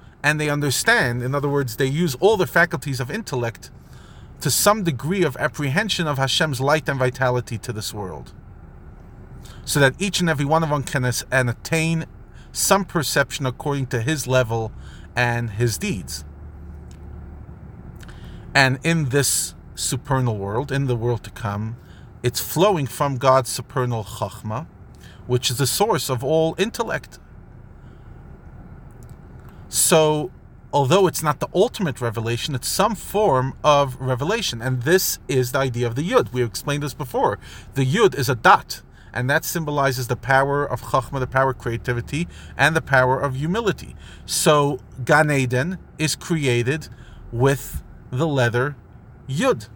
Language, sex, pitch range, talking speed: English, male, 120-150 Hz, 150 wpm